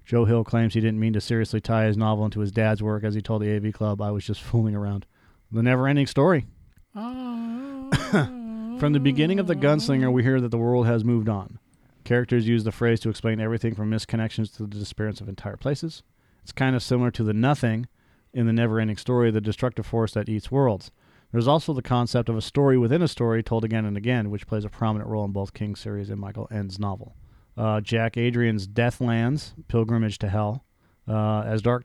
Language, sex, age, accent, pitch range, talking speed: English, male, 40-59, American, 110-125 Hz, 210 wpm